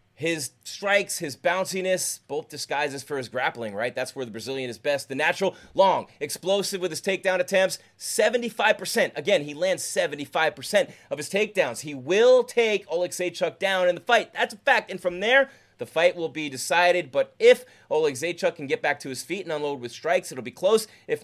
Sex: male